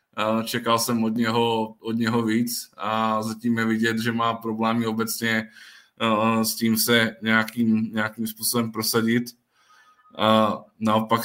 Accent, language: native, Czech